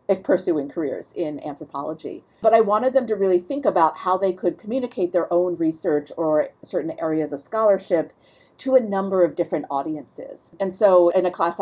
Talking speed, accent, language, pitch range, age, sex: 180 wpm, American, English, 155-200 Hz, 40-59, female